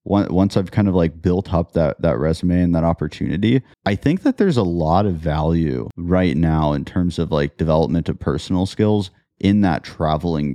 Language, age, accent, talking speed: English, 30-49, American, 195 wpm